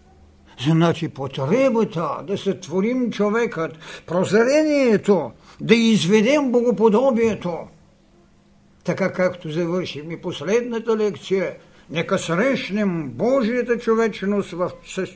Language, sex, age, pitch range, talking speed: Bulgarian, male, 60-79, 130-190 Hz, 85 wpm